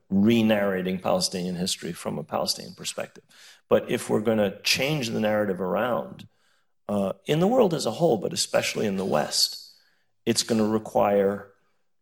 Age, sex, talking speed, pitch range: 40-59, male, 160 wpm, 100-115 Hz